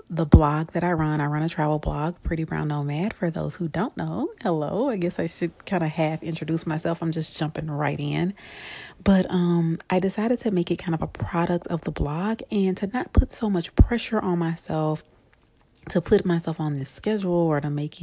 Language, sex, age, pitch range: English, female, 30-49, 150-195 Hz